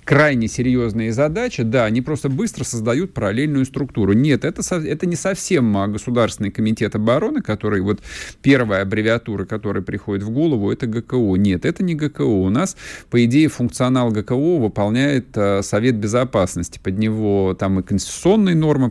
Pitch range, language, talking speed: 100-130 Hz, Russian, 150 wpm